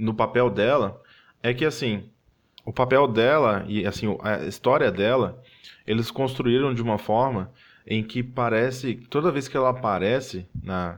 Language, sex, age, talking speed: Portuguese, male, 20-39, 155 wpm